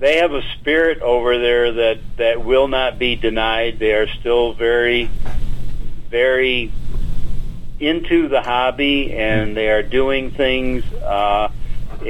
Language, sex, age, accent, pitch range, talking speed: English, male, 50-69, American, 110-125 Hz, 130 wpm